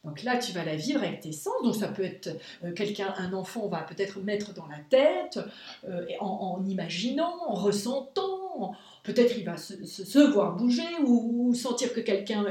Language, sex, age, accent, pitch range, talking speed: French, female, 40-59, French, 195-265 Hz, 205 wpm